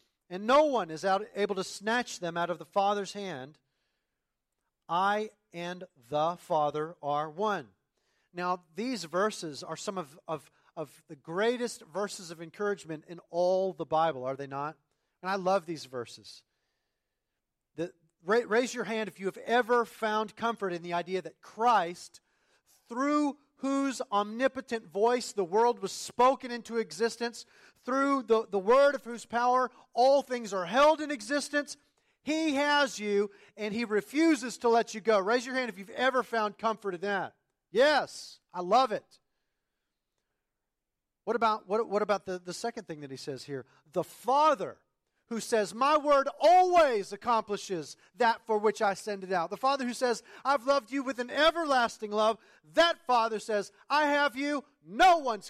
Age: 40-59